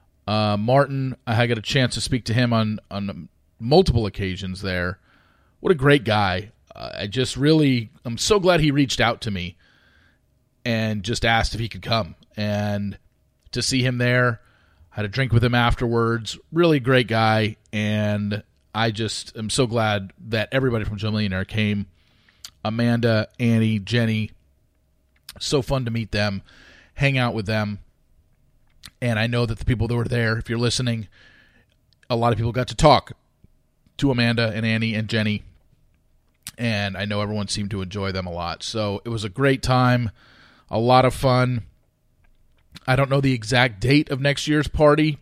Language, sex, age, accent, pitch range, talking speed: English, male, 40-59, American, 105-125 Hz, 175 wpm